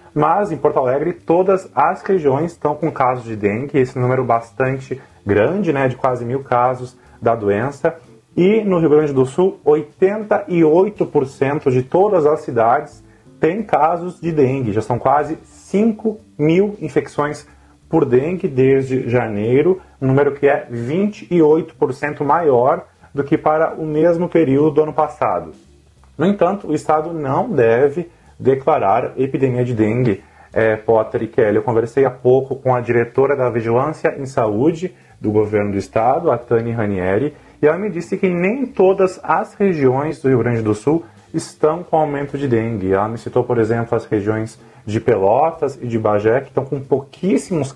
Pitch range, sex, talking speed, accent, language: 120-160 Hz, male, 160 wpm, Brazilian, Portuguese